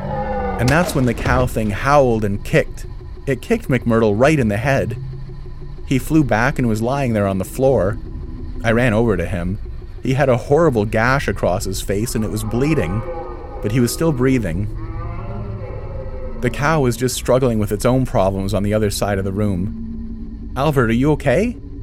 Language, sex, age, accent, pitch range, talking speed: English, male, 30-49, American, 100-125 Hz, 185 wpm